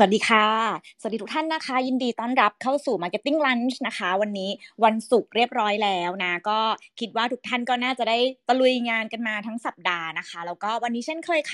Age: 20-39